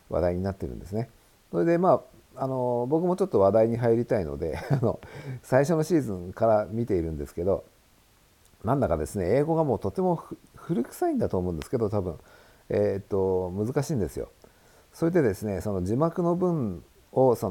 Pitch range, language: 95-150 Hz, Japanese